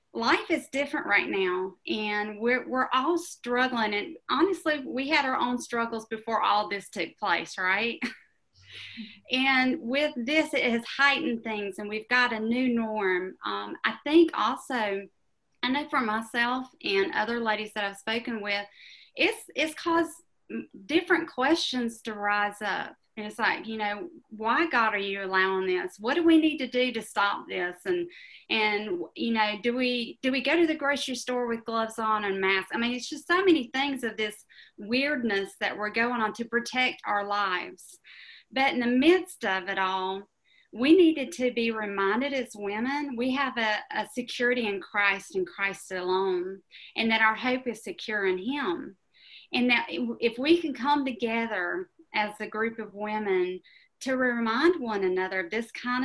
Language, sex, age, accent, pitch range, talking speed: English, female, 30-49, American, 210-270 Hz, 175 wpm